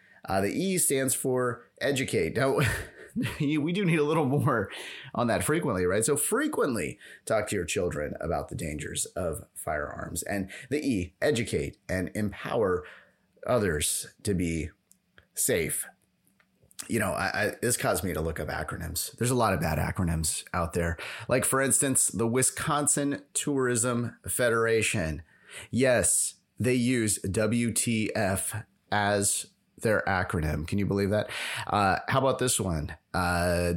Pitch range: 100-130 Hz